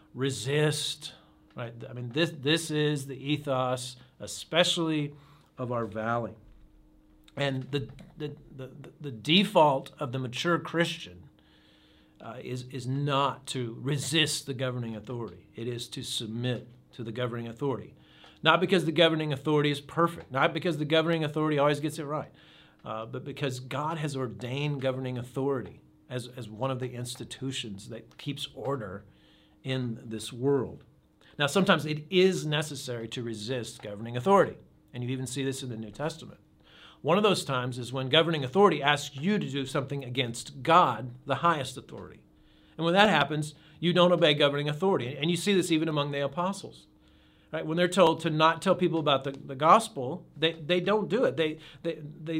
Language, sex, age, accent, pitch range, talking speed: English, male, 50-69, American, 125-160 Hz, 170 wpm